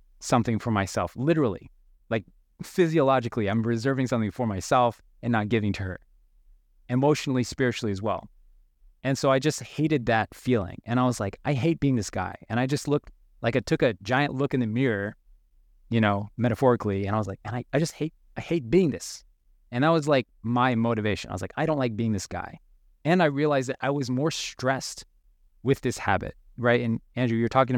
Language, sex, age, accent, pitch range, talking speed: English, male, 20-39, American, 105-135 Hz, 205 wpm